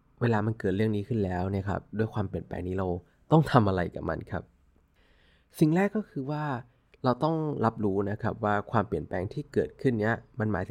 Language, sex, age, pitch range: Thai, male, 20-39, 95-120 Hz